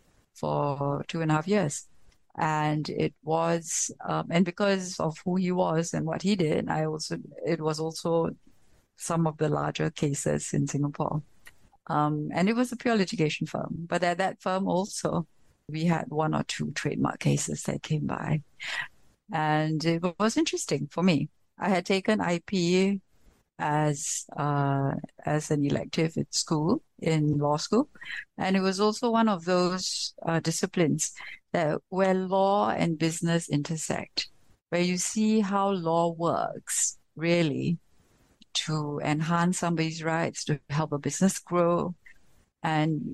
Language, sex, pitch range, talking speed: English, female, 150-185 Hz, 150 wpm